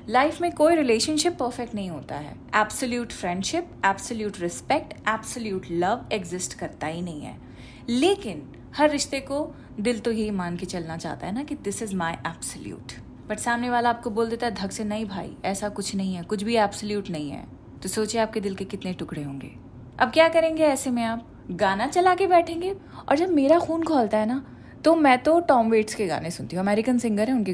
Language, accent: Hindi, native